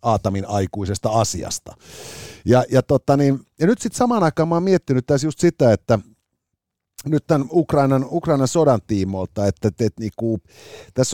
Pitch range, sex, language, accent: 110-145 Hz, male, Finnish, native